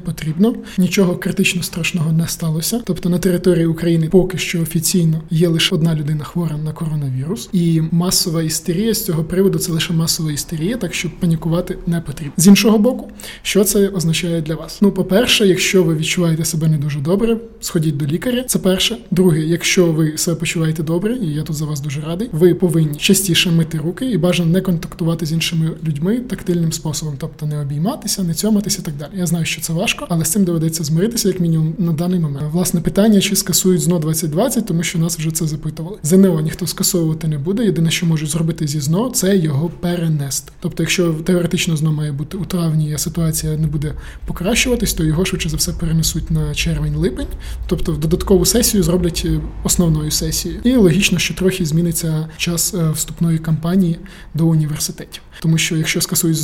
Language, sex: Ukrainian, male